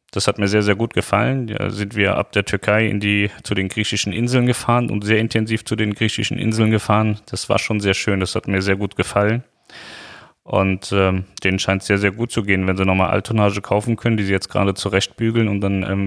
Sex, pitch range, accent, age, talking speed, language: male, 95-110 Hz, German, 30-49, 230 wpm, German